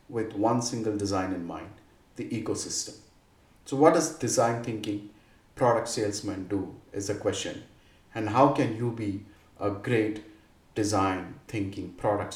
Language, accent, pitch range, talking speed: English, Indian, 105-125 Hz, 140 wpm